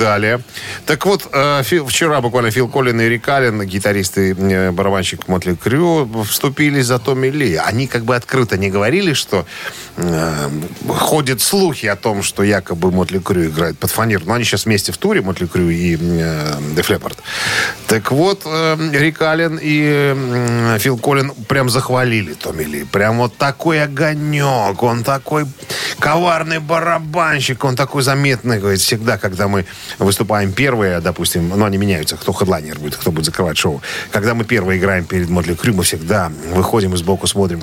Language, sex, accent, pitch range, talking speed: Russian, male, native, 95-135 Hz, 165 wpm